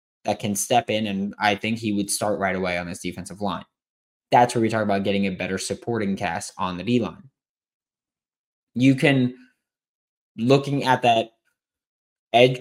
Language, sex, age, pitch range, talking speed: English, male, 20-39, 100-125 Hz, 165 wpm